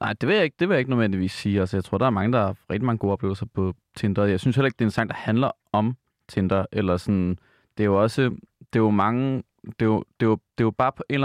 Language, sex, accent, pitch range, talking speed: Danish, male, native, 100-120 Hz, 300 wpm